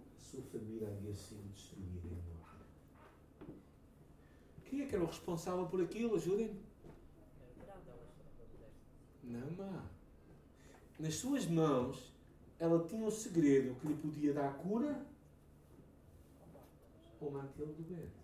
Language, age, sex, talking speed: Portuguese, 60-79, male, 105 wpm